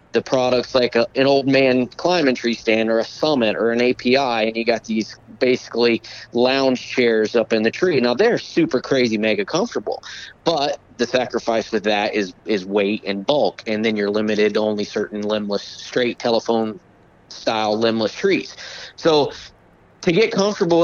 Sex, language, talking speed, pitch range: male, English, 170 wpm, 115-135 Hz